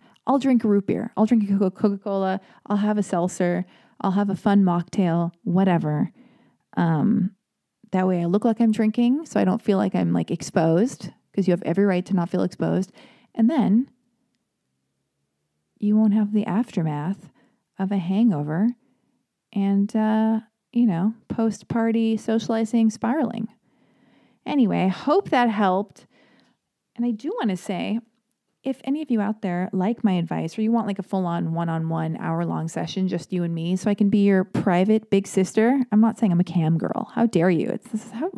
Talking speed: 180 wpm